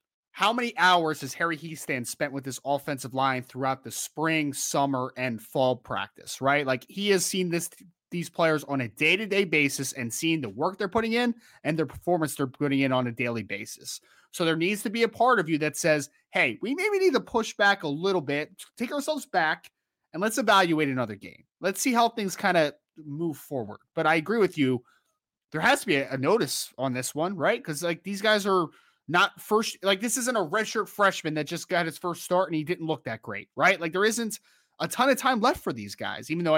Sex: male